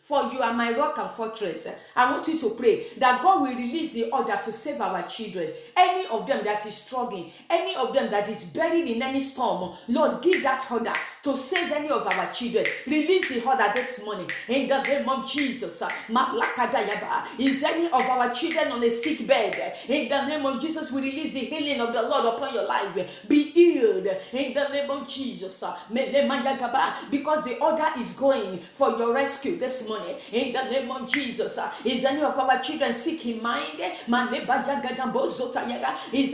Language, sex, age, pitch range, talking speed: English, female, 40-59, 245-295 Hz, 185 wpm